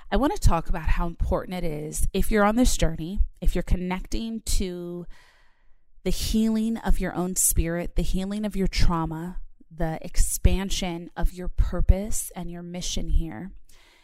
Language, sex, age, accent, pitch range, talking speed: English, female, 30-49, American, 165-195 Hz, 165 wpm